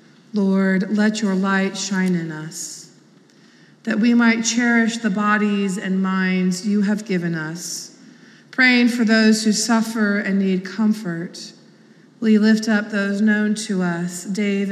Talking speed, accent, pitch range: 145 wpm, American, 185-220 Hz